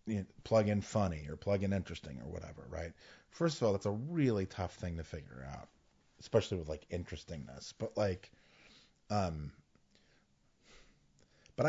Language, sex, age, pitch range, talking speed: English, male, 30-49, 85-120 Hz, 150 wpm